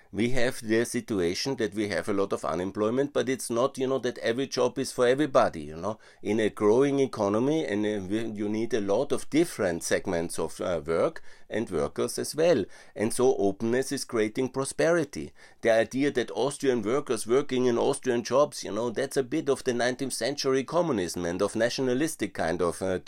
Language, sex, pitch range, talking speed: German, male, 100-130 Hz, 190 wpm